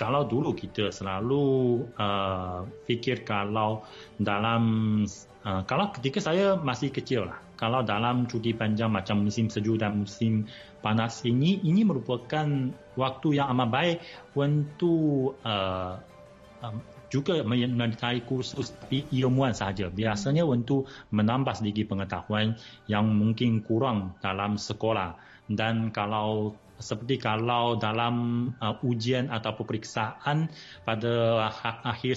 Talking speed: 110 wpm